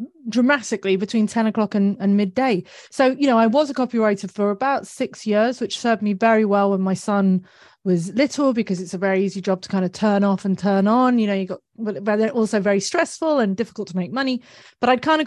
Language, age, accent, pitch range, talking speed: English, 30-49, British, 190-235 Hz, 230 wpm